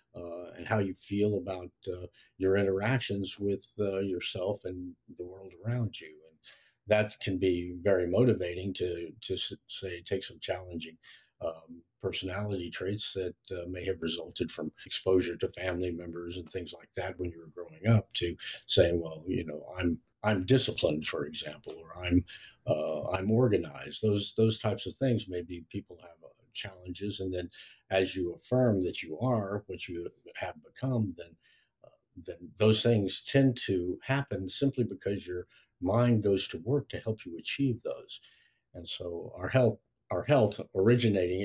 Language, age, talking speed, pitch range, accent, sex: English, 50-69, 165 wpm, 90-110 Hz, American, male